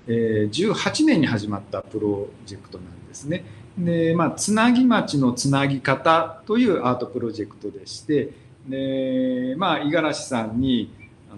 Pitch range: 110-170 Hz